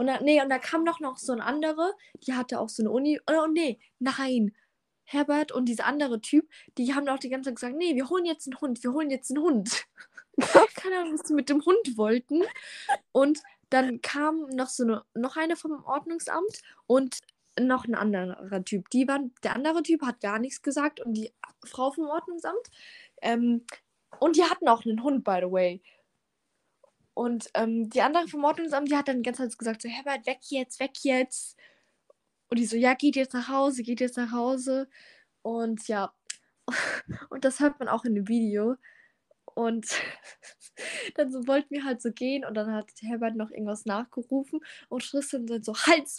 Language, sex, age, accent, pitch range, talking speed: German, female, 10-29, German, 230-295 Hz, 190 wpm